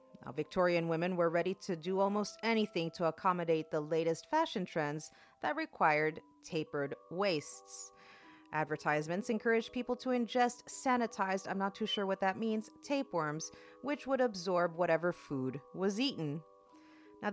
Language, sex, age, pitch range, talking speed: English, female, 40-59, 160-230 Hz, 140 wpm